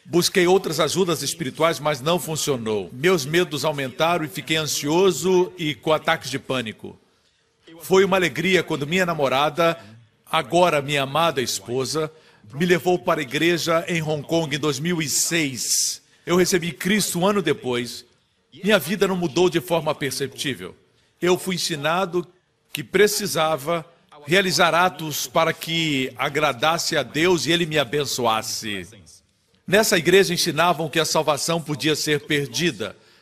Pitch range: 145-180 Hz